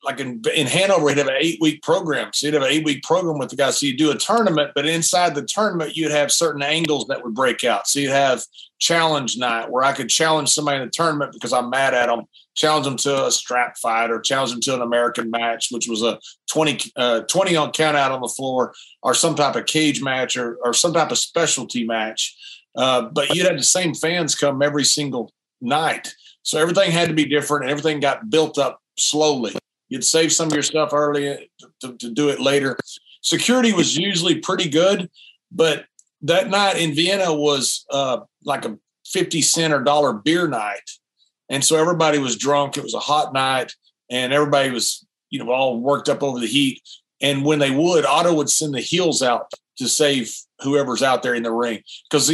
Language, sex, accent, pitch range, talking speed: English, male, American, 130-160 Hz, 210 wpm